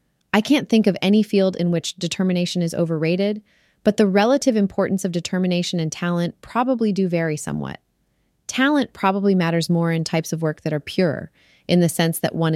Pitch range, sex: 150-185 Hz, female